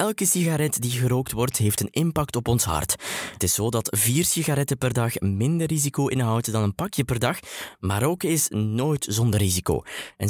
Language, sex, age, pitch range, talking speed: Dutch, male, 20-39, 100-140 Hz, 200 wpm